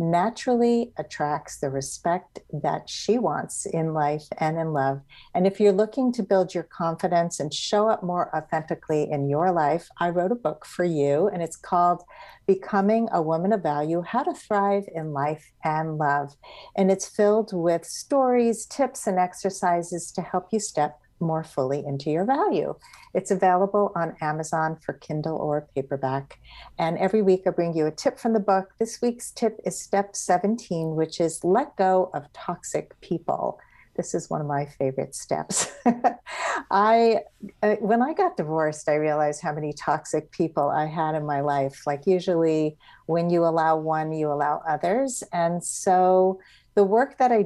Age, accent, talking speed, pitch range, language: 50-69, American, 175 wpm, 155-205 Hz, English